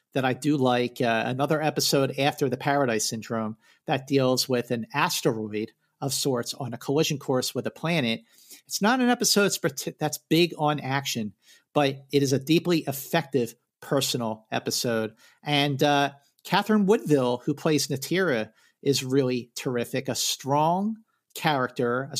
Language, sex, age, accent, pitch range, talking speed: English, male, 50-69, American, 125-155 Hz, 150 wpm